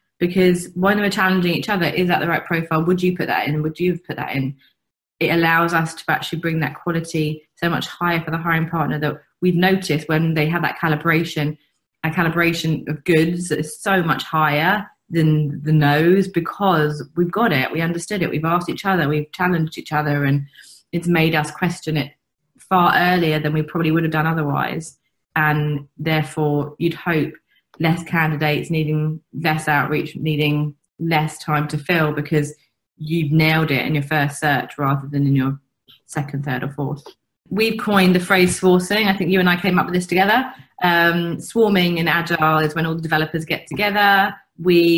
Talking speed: 195 wpm